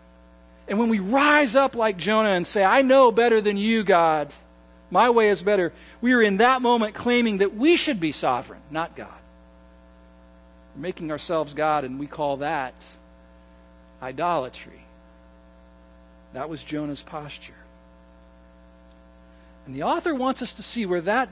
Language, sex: English, male